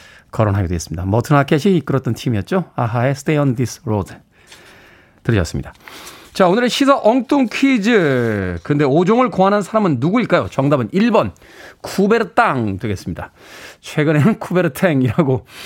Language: Korean